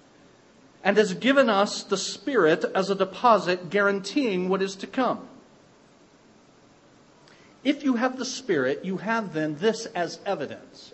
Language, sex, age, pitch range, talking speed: English, male, 50-69, 155-210 Hz, 135 wpm